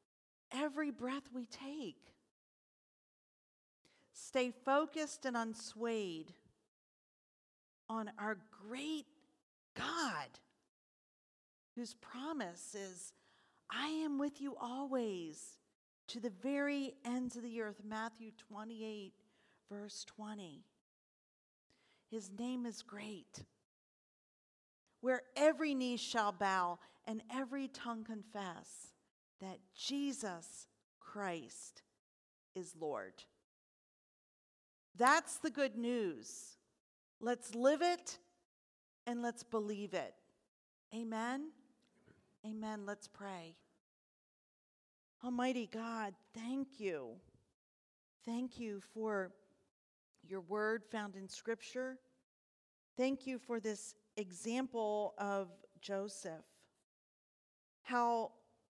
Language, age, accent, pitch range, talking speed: English, 40-59, American, 205-255 Hz, 85 wpm